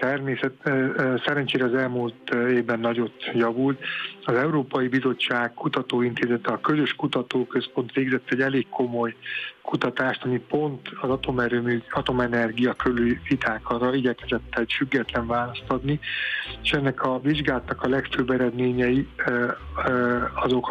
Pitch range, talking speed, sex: 120-135 Hz, 115 wpm, male